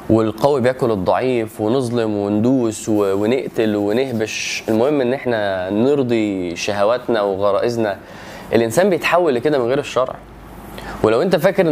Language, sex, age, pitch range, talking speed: Arabic, male, 20-39, 105-140 Hz, 115 wpm